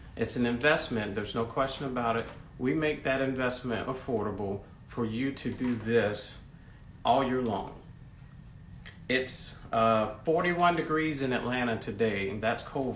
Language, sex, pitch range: English, male, 120-140 Hz